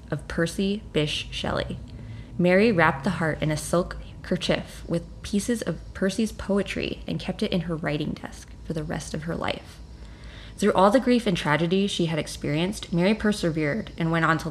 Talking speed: 185 wpm